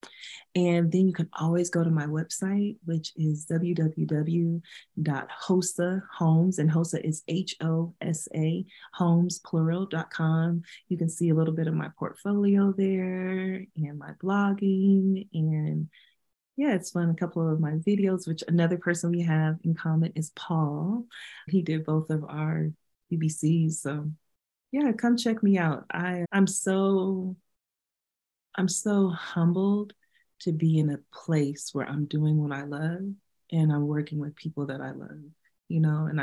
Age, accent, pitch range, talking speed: 30-49, American, 155-185 Hz, 150 wpm